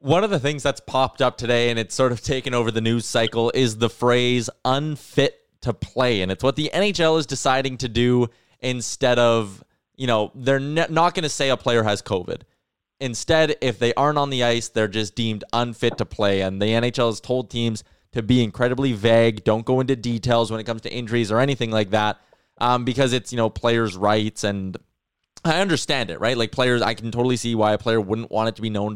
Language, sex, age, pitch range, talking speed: English, male, 20-39, 110-135 Hz, 225 wpm